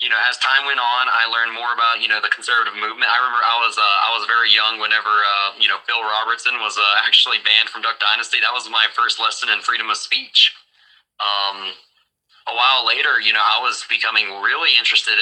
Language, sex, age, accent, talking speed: English, male, 20-39, American, 225 wpm